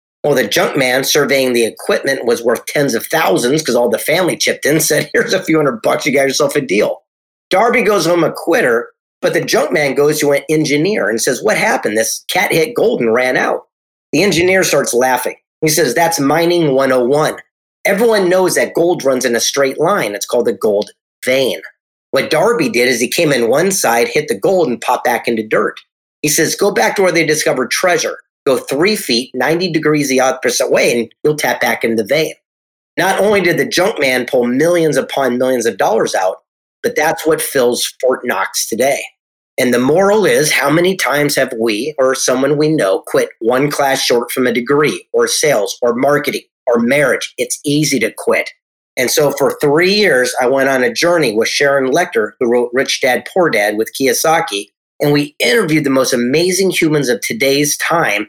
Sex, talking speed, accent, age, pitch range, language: male, 205 wpm, American, 40-59, 135-195 Hz, English